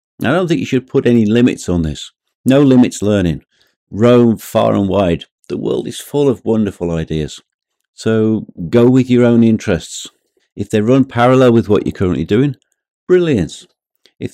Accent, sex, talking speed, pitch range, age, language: British, male, 170 wpm, 90-110 Hz, 50-69, English